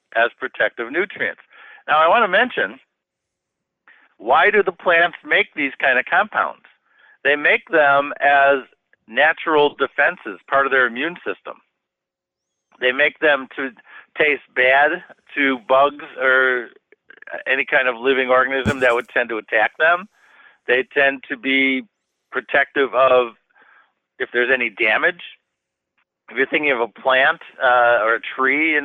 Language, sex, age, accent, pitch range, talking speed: English, male, 50-69, American, 125-140 Hz, 145 wpm